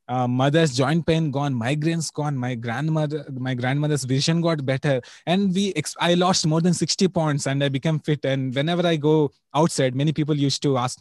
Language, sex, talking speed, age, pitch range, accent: English, male, 200 wpm, 20-39, 135-175 Hz, Indian